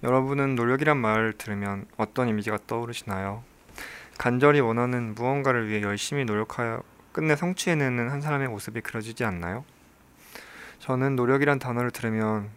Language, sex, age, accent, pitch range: Korean, male, 20-39, native, 110-135 Hz